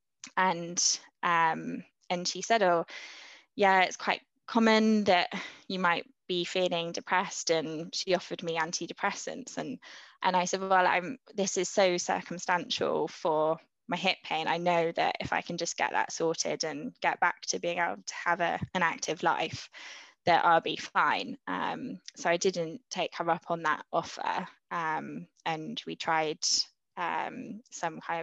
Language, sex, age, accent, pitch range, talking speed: English, female, 10-29, British, 170-215 Hz, 165 wpm